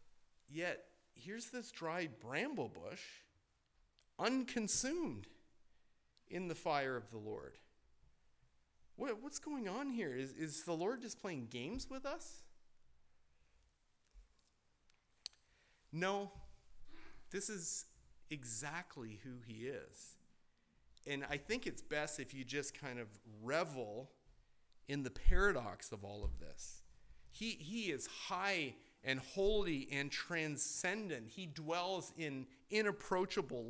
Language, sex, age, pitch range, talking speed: English, male, 40-59, 140-225 Hz, 115 wpm